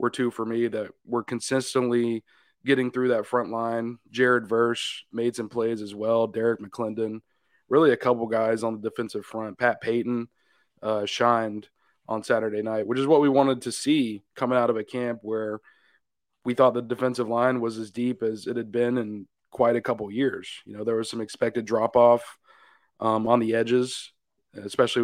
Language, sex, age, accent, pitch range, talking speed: English, male, 20-39, American, 110-125 Hz, 190 wpm